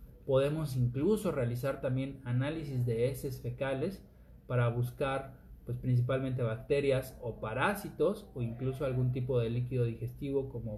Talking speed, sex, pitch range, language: 130 wpm, male, 120-145 Hz, Spanish